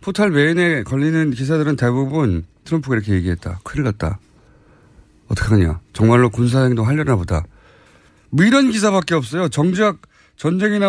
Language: Korean